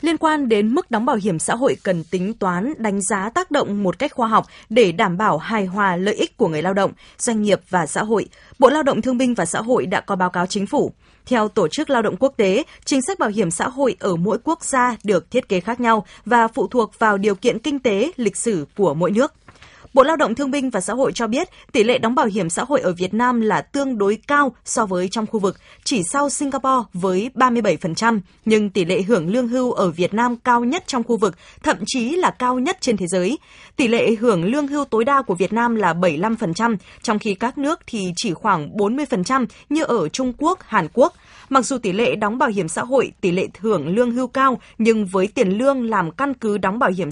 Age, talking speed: 20-39, 245 wpm